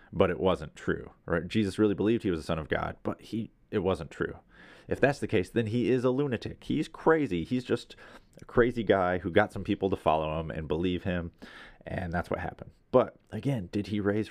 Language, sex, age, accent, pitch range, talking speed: English, male, 30-49, American, 90-115 Hz, 225 wpm